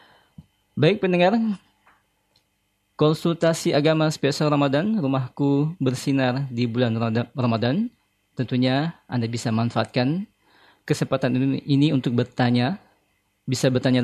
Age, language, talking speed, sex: 20-39, Indonesian, 90 wpm, male